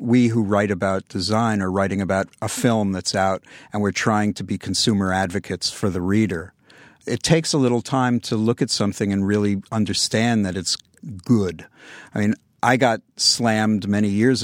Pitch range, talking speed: 100-120 Hz, 185 wpm